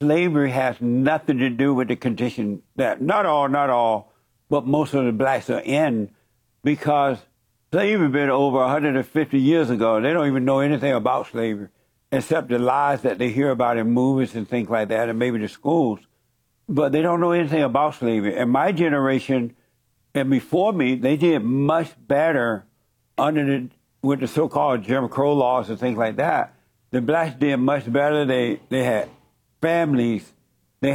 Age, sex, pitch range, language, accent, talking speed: 60-79, male, 120-150 Hz, English, American, 175 wpm